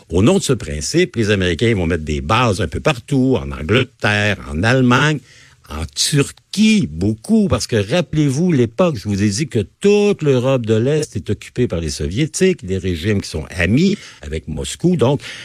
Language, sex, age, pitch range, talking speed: French, male, 60-79, 95-140 Hz, 185 wpm